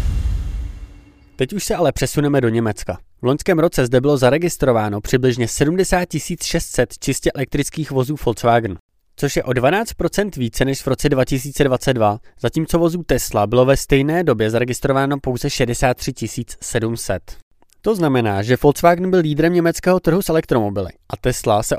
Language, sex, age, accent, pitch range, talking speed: Czech, male, 20-39, native, 120-150 Hz, 145 wpm